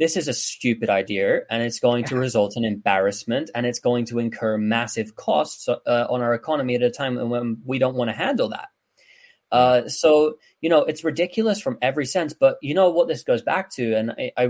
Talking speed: 220 wpm